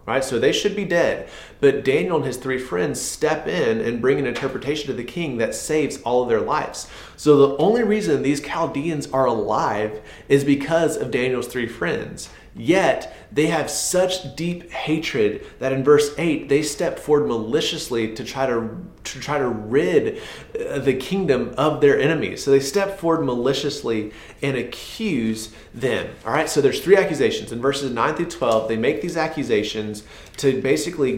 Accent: American